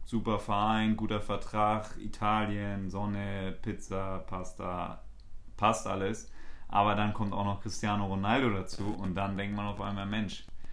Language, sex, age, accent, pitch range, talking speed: German, male, 30-49, German, 95-110 Hz, 140 wpm